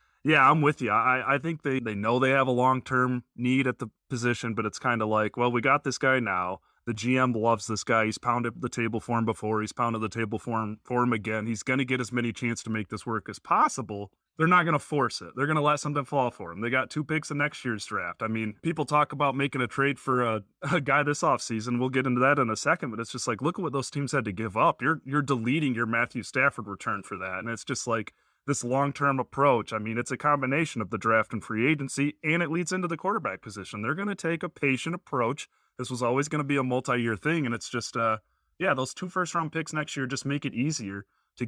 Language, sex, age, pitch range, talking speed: English, male, 30-49, 115-145 Hz, 270 wpm